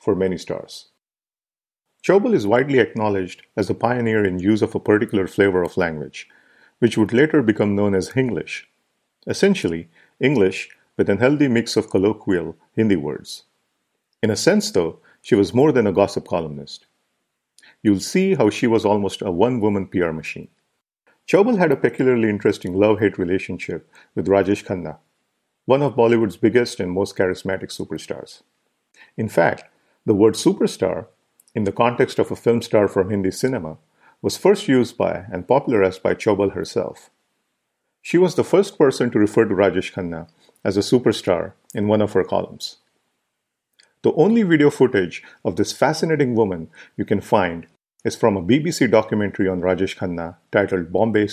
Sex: male